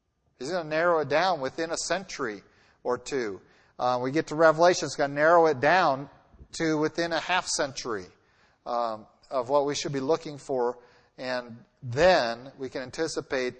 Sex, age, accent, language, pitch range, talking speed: male, 40-59, American, English, 120-155 Hz, 175 wpm